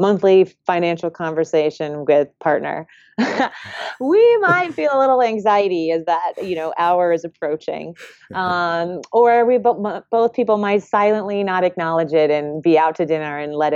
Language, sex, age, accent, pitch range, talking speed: English, female, 30-49, American, 155-200 Hz, 155 wpm